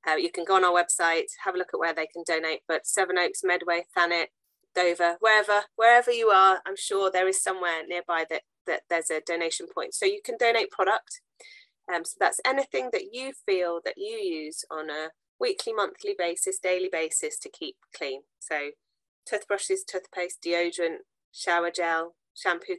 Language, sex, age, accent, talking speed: English, female, 30-49, British, 180 wpm